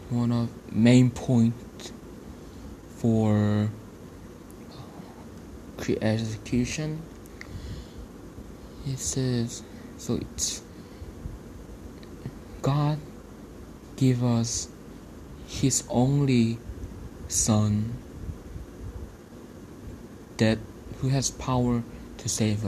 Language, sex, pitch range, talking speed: English, male, 95-120 Hz, 60 wpm